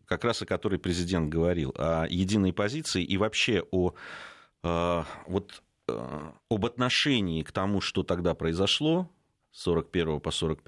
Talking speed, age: 125 wpm, 30-49